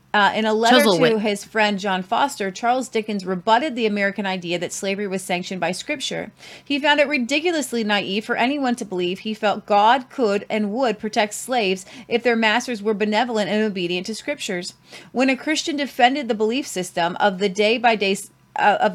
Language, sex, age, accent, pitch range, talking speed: English, female, 30-49, American, 195-245 Hz, 175 wpm